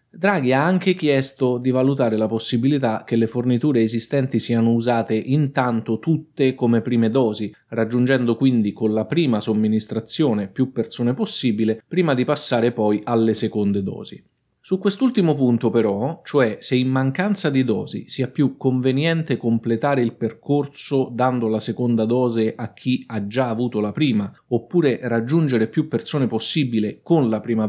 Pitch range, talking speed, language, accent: 115-145 Hz, 150 wpm, Italian, native